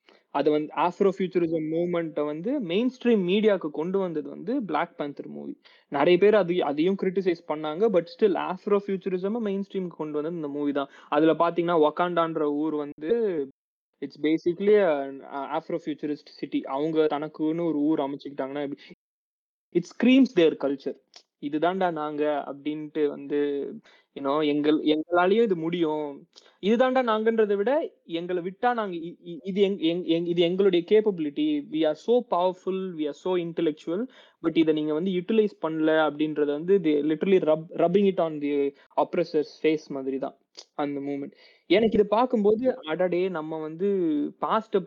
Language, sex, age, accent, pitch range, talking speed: Tamil, male, 20-39, native, 150-195 Hz, 115 wpm